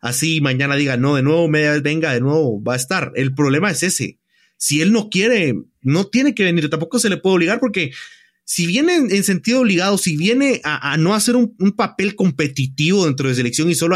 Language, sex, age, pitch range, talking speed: English, male, 30-49, 145-205 Hz, 225 wpm